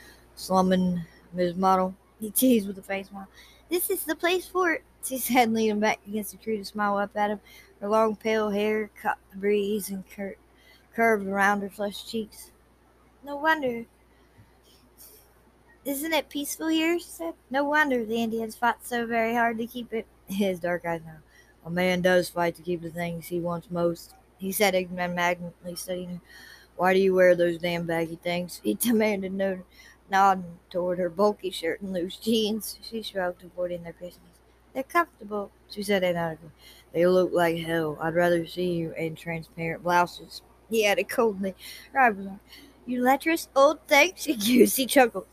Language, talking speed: English, 170 wpm